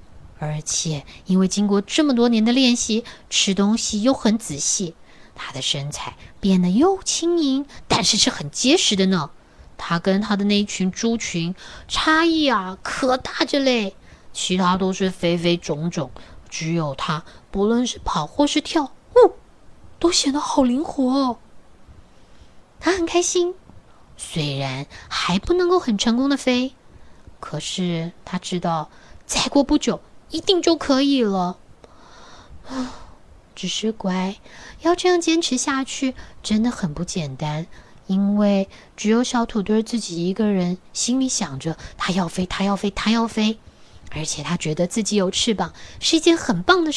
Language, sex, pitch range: Chinese, female, 180-265 Hz